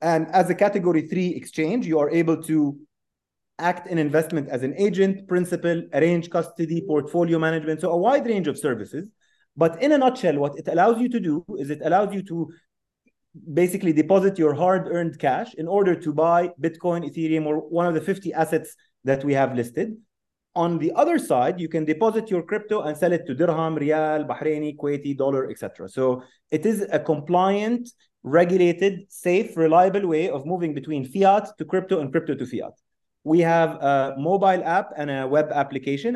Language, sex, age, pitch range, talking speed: English, male, 30-49, 140-175 Hz, 185 wpm